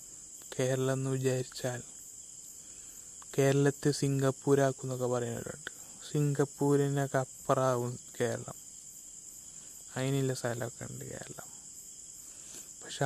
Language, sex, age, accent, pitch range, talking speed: Malayalam, male, 20-39, native, 130-140 Hz, 65 wpm